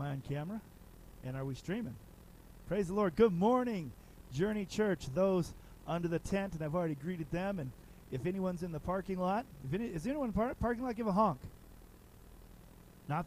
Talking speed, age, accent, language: 185 wpm, 40-59, American, English